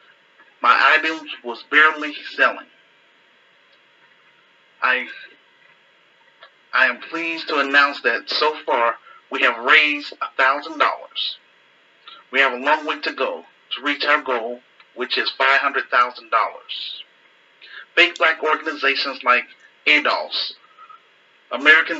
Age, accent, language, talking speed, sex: 40-59, American, English, 115 wpm, male